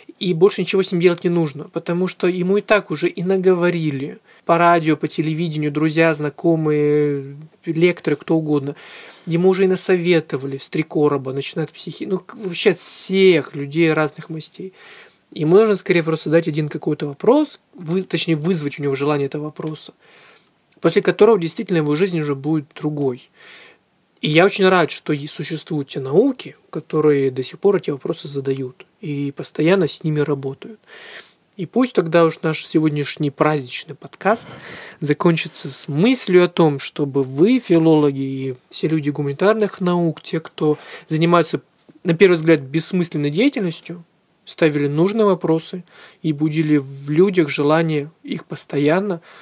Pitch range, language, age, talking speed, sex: 150-180 Hz, Russian, 20-39, 150 wpm, male